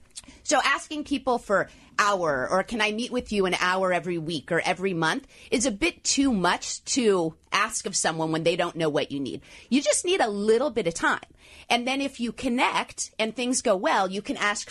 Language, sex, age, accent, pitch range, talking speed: English, female, 30-49, American, 180-275 Hz, 220 wpm